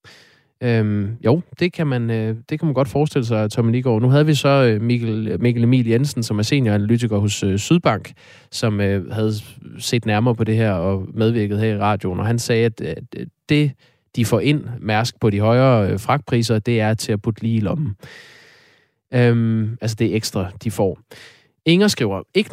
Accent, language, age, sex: native, Danish, 20-39, male